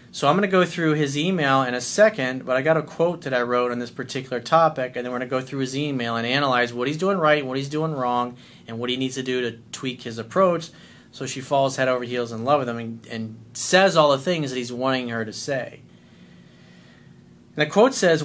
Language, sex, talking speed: English, male, 260 wpm